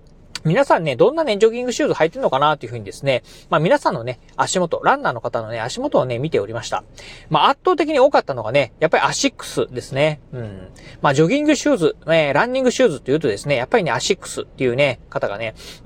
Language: Japanese